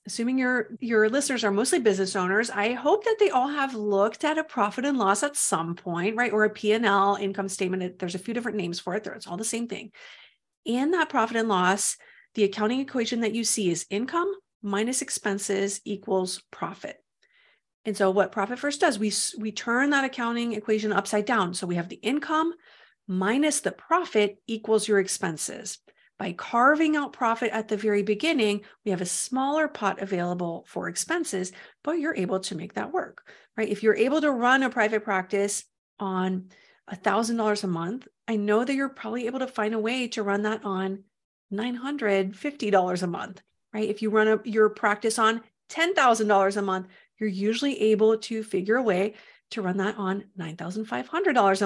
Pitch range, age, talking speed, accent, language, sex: 195-240 Hz, 40-59, 185 wpm, American, English, female